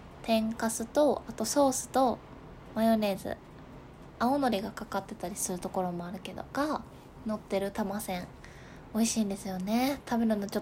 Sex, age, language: female, 20-39, Japanese